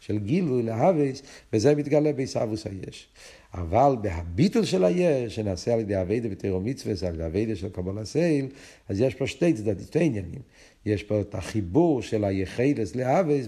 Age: 50-69